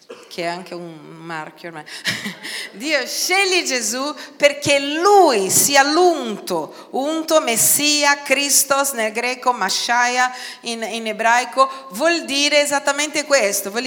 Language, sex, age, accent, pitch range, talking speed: Italian, female, 40-59, native, 225-325 Hz, 115 wpm